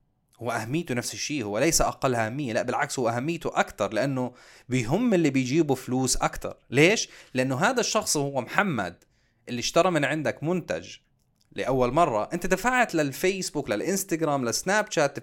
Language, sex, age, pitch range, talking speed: Arabic, male, 30-49, 120-165 Hz, 145 wpm